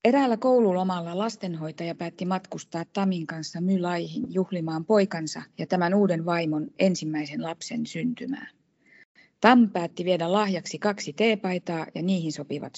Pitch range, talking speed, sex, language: 155-205 Hz, 120 wpm, female, Finnish